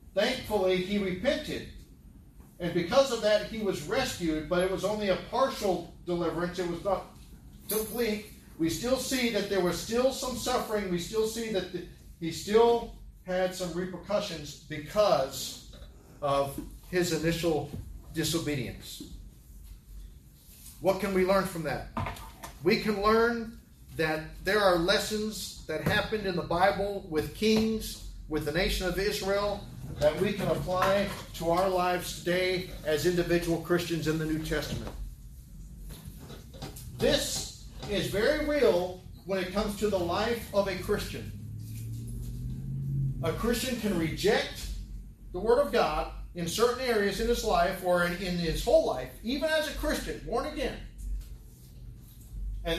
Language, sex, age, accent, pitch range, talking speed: English, male, 40-59, American, 160-215 Hz, 140 wpm